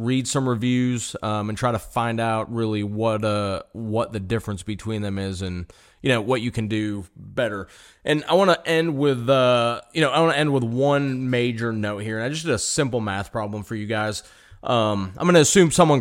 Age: 30-49